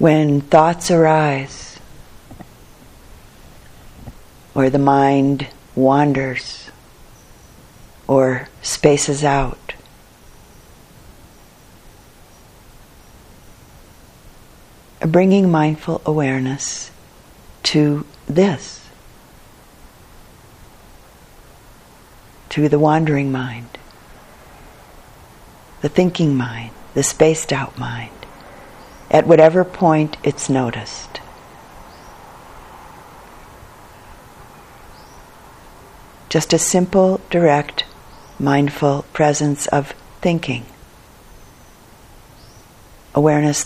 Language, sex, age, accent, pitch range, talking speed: English, female, 50-69, American, 110-155 Hz, 55 wpm